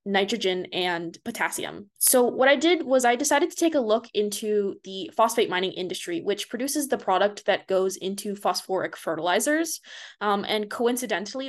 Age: 20-39